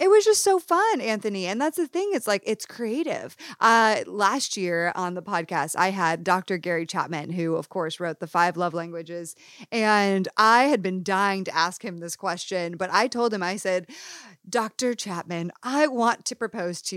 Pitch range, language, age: 180-240 Hz, English, 30-49